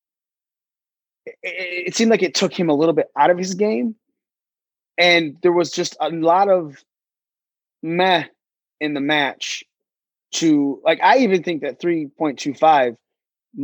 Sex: male